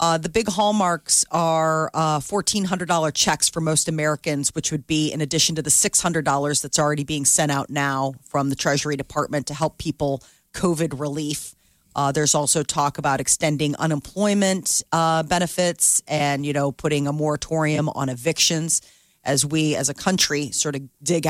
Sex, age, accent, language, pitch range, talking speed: female, 40-59, American, English, 140-165 Hz, 165 wpm